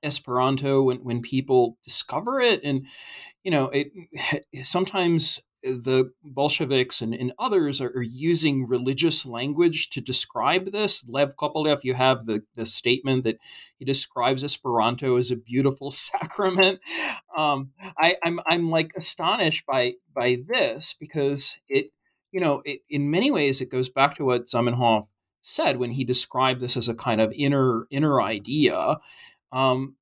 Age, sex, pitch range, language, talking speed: 30-49, male, 130-170 Hz, English, 150 wpm